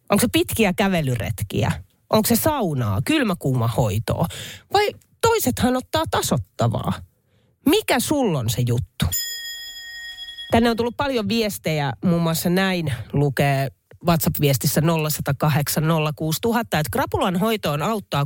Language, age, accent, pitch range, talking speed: Finnish, 30-49, native, 145-240 Hz, 100 wpm